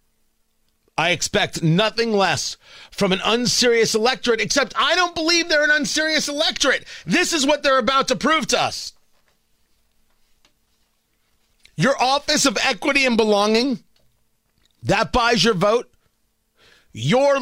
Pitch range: 155-240 Hz